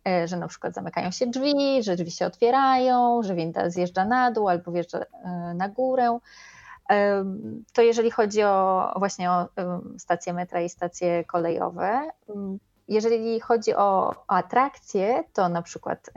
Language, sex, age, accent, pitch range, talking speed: Polish, female, 20-39, native, 185-240 Hz, 140 wpm